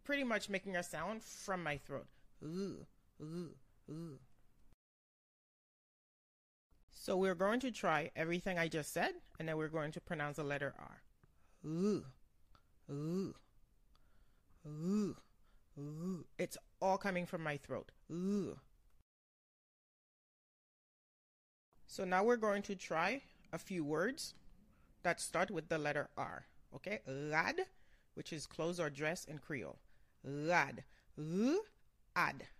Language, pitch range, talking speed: English, 145-190 Hz, 110 wpm